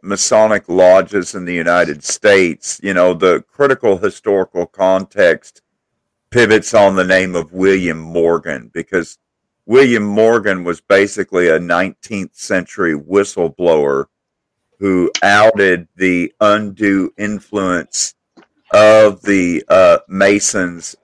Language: English